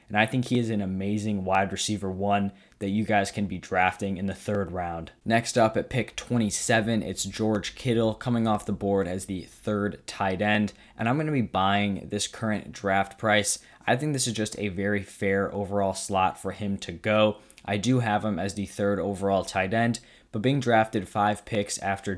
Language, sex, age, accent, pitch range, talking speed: English, male, 10-29, American, 100-115 Hz, 205 wpm